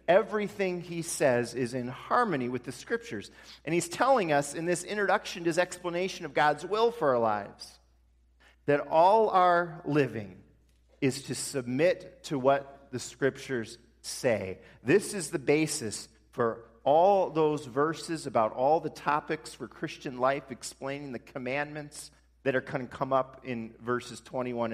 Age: 40-59